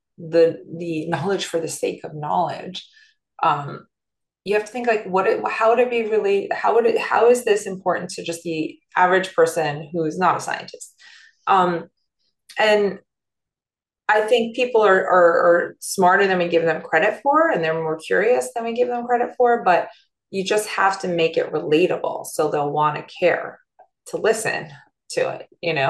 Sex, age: female, 20-39